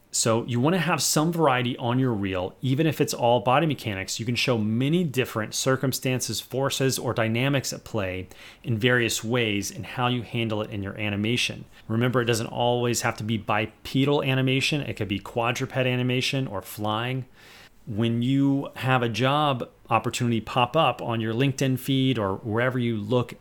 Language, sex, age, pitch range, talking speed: English, male, 30-49, 105-130 Hz, 175 wpm